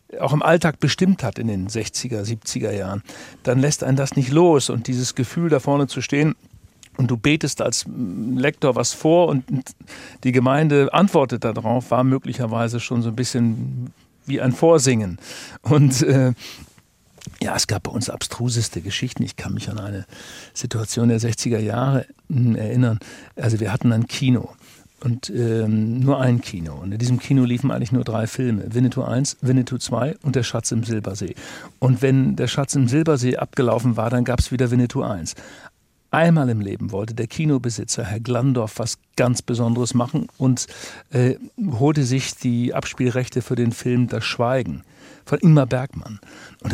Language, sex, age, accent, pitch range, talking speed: German, male, 60-79, German, 115-135 Hz, 170 wpm